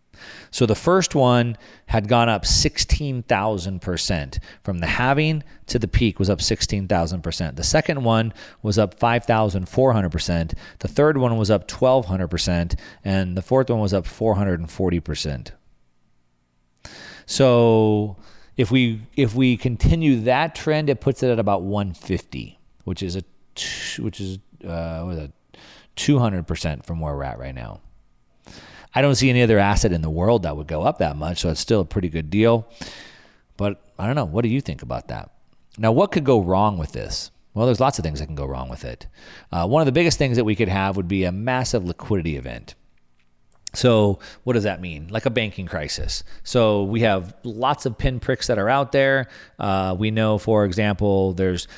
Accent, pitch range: American, 95-120 Hz